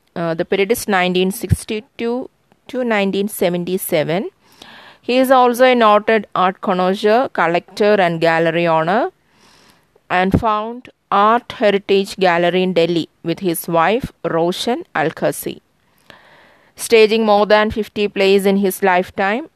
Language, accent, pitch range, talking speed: English, Indian, 180-215 Hz, 115 wpm